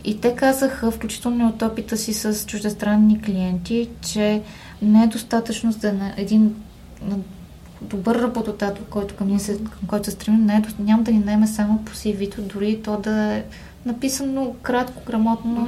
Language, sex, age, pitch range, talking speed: Bulgarian, female, 20-39, 195-220 Hz, 170 wpm